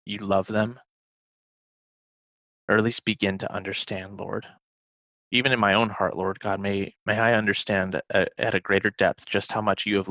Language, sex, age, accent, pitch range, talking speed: English, male, 20-39, American, 95-115 Hz, 185 wpm